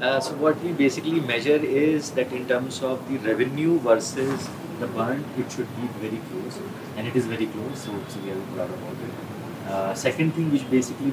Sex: male